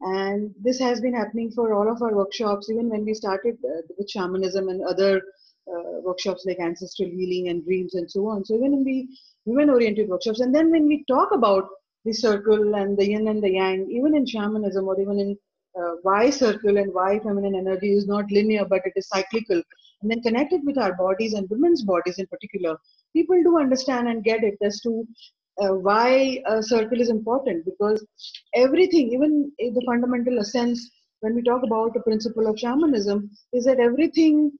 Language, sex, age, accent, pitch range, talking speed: English, female, 30-49, Indian, 200-255 Hz, 195 wpm